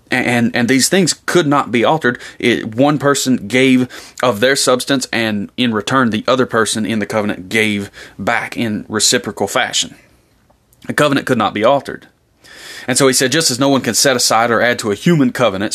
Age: 30-49